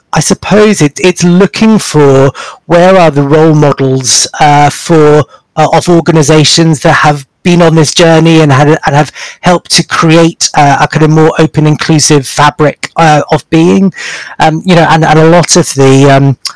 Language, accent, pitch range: English, British, 145-170 Hz